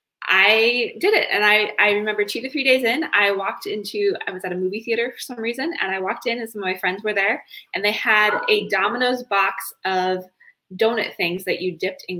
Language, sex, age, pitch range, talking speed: English, female, 20-39, 200-265 Hz, 235 wpm